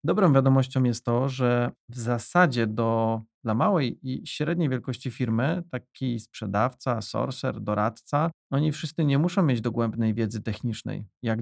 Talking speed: 140 wpm